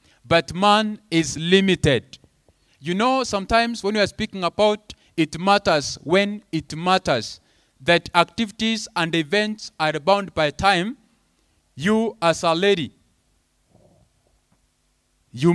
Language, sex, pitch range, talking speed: English, male, 120-185 Hz, 115 wpm